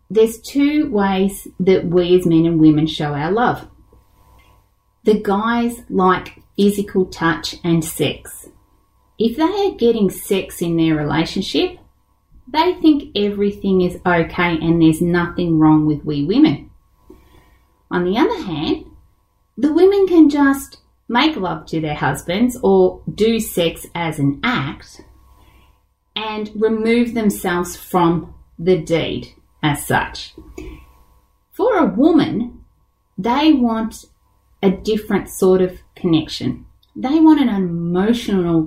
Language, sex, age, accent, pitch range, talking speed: English, female, 30-49, Australian, 165-235 Hz, 125 wpm